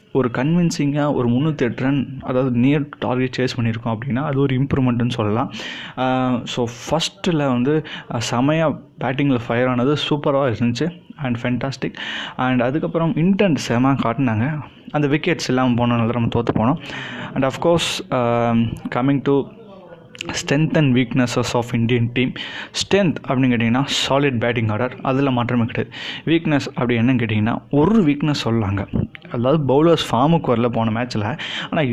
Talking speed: 135 wpm